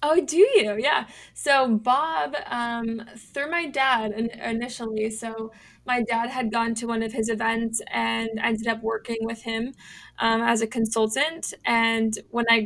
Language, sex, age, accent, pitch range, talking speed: English, female, 20-39, American, 220-230 Hz, 160 wpm